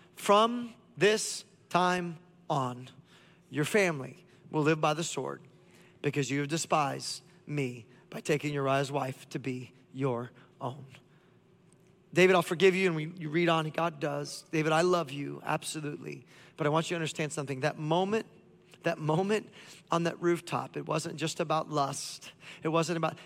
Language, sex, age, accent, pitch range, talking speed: English, male, 30-49, American, 150-190 Hz, 160 wpm